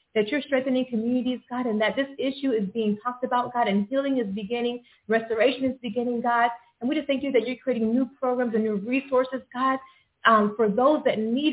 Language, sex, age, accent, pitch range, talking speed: English, female, 30-49, American, 215-255 Hz, 215 wpm